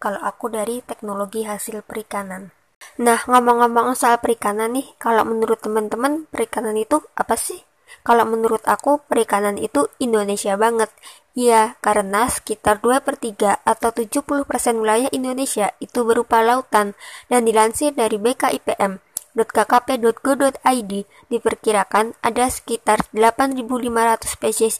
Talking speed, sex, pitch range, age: 115 wpm, male, 215-245 Hz, 20-39